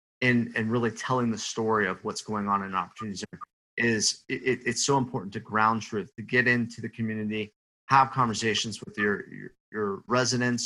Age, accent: 30-49, American